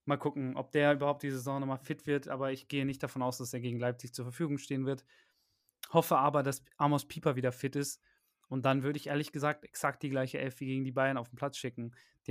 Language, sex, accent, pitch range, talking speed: German, male, German, 125-145 Hz, 250 wpm